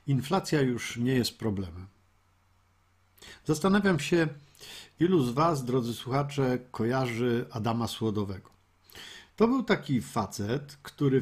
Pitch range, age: 105-155 Hz, 50-69